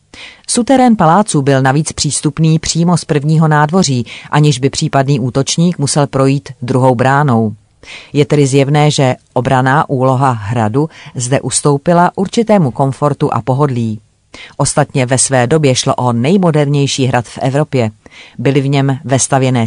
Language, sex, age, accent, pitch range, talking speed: Czech, female, 40-59, native, 130-155 Hz, 135 wpm